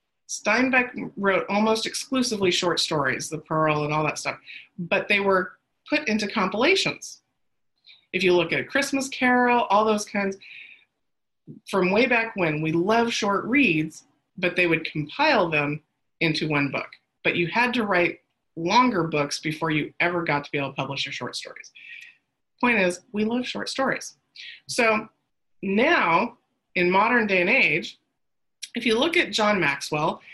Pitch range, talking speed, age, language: 165-225 Hz, 160 wpm, 30-49, English